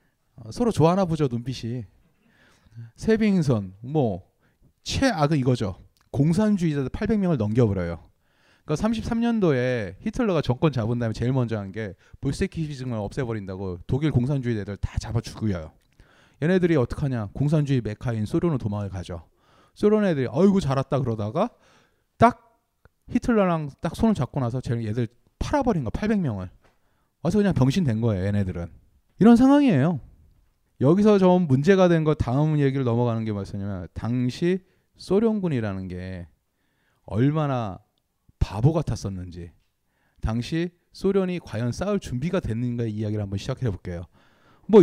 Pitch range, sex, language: 105-170 Hz, male, Korean